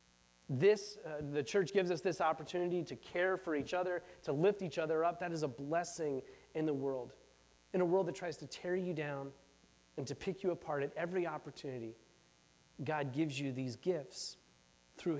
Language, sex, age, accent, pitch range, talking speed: English, male, 30-49, American, 120-170 Hz, 190 wpm